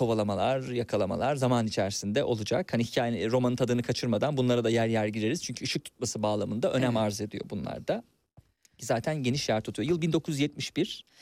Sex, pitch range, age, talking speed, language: male, 115-175 Hz, 40-59, 160 wpm, Turkish